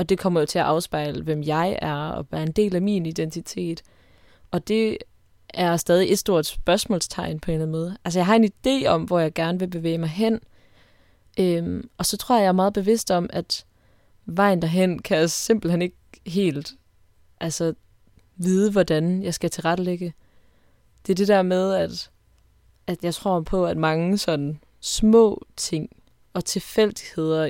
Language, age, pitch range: Danish, 20-39, 155-190 Hz